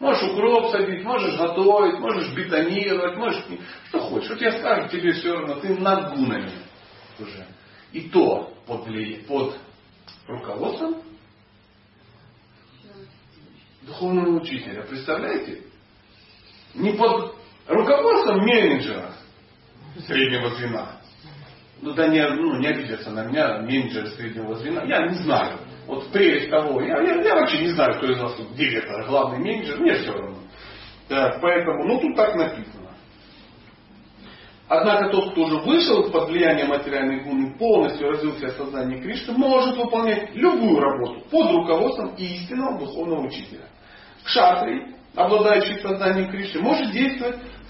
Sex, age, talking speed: male, 40-59, 130 wpm